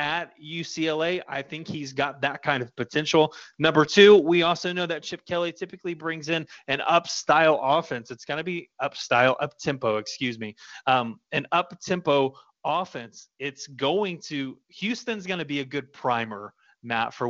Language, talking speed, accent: English, 165 wpm, American